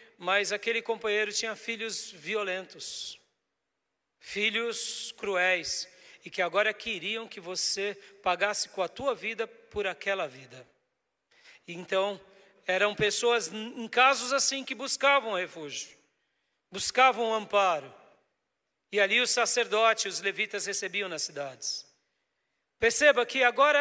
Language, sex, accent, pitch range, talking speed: Portuguese, male, Brazilian, 200-255 Hz, 115 wpm